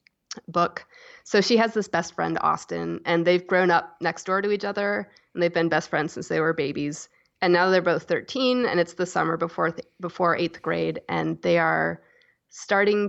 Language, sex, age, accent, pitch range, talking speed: English, female, 20-39, American, 165-195 Hz, 200 wpm